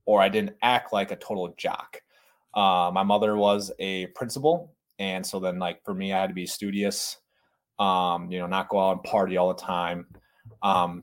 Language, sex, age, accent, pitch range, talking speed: English, male, 20-39, American, 100-140 Hz, 200 wpm